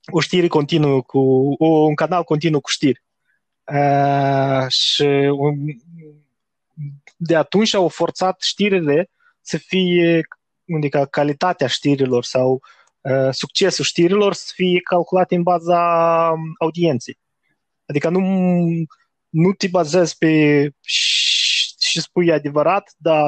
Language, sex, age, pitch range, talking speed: Romanian, male, 20-39, 145-175 Hz, 100 wpm